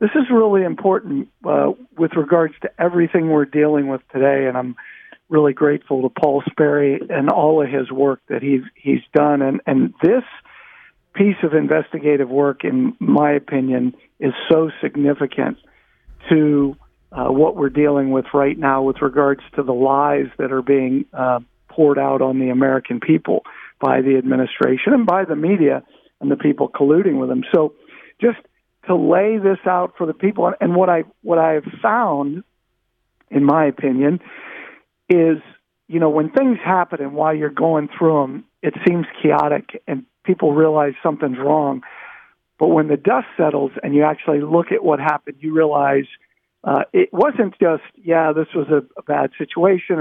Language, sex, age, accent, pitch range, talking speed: English, male, 50-69, American, 140-180 Hz, 170 wpm